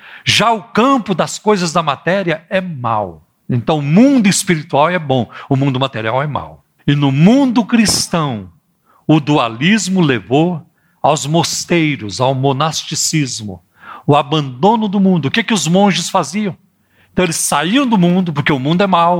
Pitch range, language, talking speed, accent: 145-205 Hz, Portuguese, 160 wpm, Brazilian